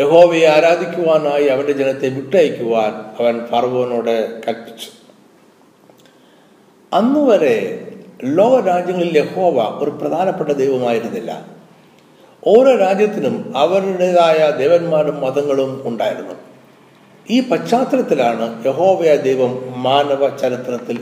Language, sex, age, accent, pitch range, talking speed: Malayalam, male, 60-79, native, 130-190 Hz, 75 wpm